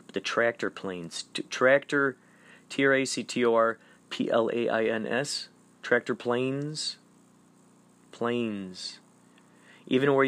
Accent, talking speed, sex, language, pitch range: American, 65 wpm, male, English, 100-125 Hz